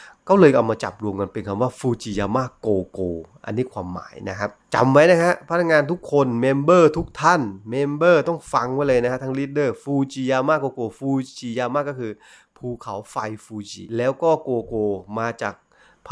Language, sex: Thai, male